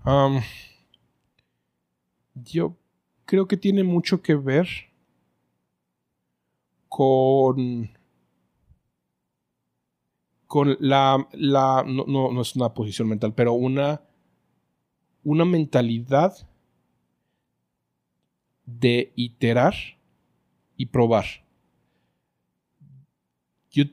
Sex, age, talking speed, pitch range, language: male, 40-59, 70 wpm, 105-135 Hz, Spanish